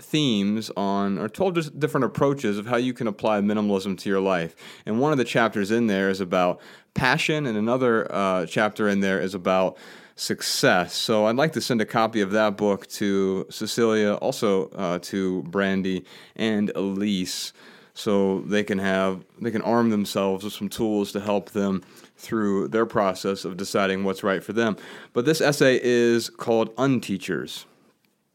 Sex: male